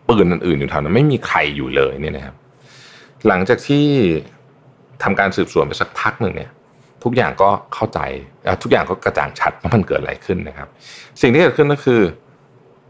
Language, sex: Thai, male